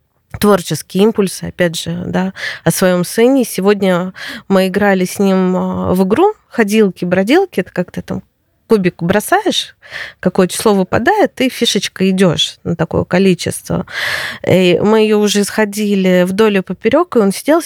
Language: Russian